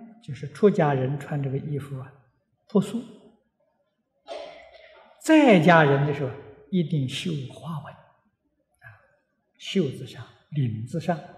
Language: Chinese